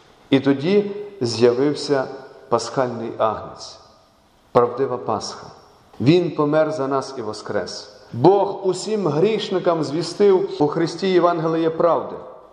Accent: native